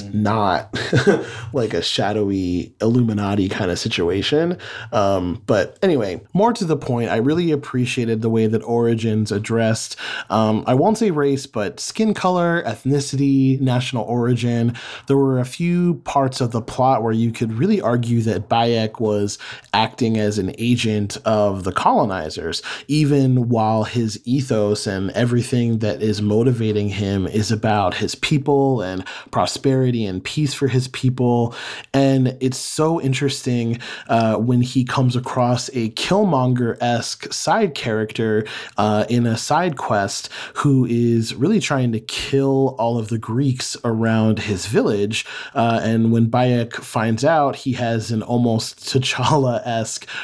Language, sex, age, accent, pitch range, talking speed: English, male, 30-49, American, 110-135 Hz, 145 wpm